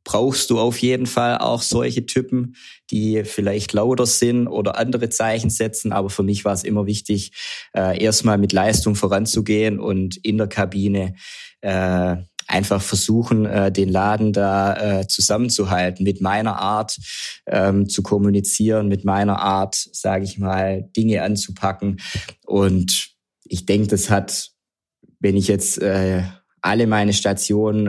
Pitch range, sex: 95-110 Hz, male